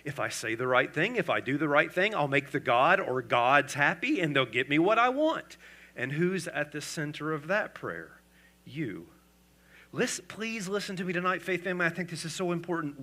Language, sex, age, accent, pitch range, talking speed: English, male, 40-59, American, 135-225 Hz, 220 wpm